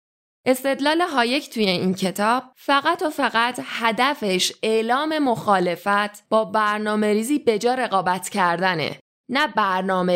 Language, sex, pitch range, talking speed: Persian, female, 180-235 Hz, 110 wpm